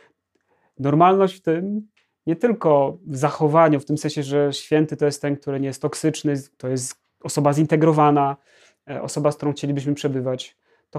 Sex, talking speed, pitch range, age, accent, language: male, 160 wpm, 145-175 Hz, 30-49, native, Polish